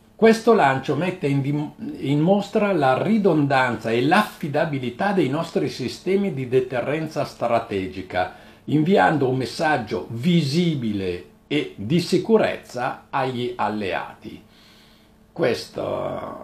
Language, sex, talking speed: Italian, male, 95 wpm